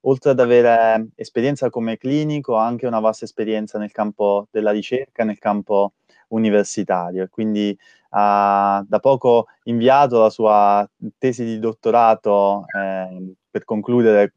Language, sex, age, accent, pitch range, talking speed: Italian, male, 20-39, native, 105-120 Hz, 130 wpm